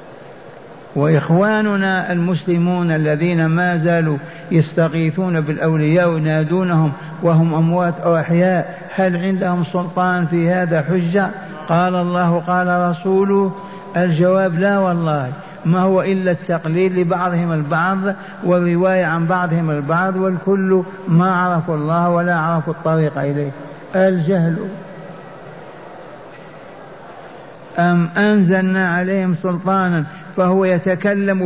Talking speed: 95 wpm